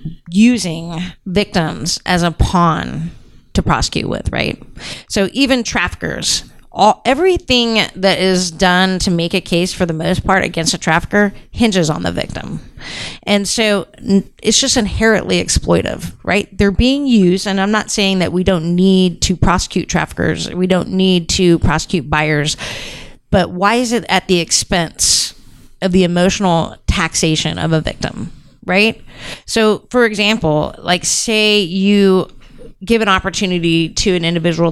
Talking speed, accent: 150 wpm, American